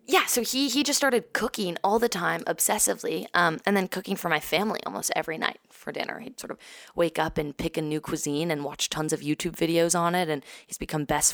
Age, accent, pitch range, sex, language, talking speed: 20-39, American, 150-195 Hz, female, English, 240 wpm